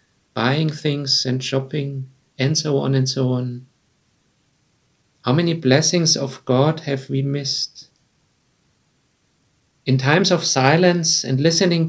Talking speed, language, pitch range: 120 wpm, English, 130-160 Hz